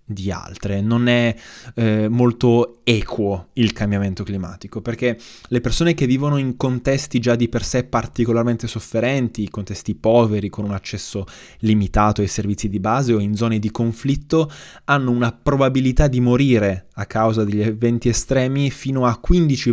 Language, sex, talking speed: Italian, male, 155 wpm